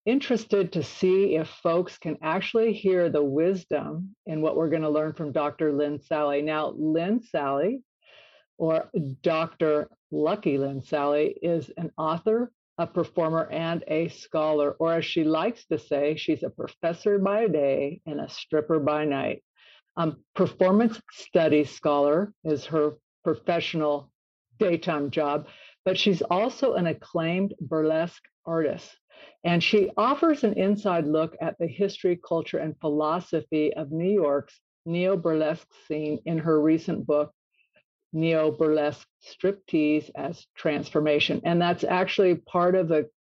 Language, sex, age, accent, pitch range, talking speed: English, female, 50-69, American, 150-185 Hz, 135 wpm